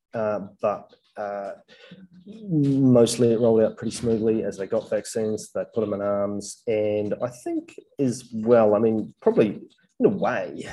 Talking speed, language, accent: 160 wpm, English, Australian